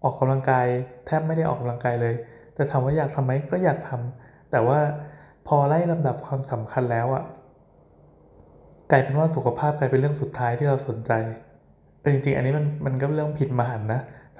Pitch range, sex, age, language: 120-150 Hz, male, 20-39, Thai